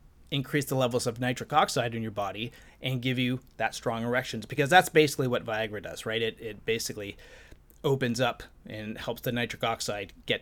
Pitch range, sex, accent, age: 120-140 Hz, male, American, 30-49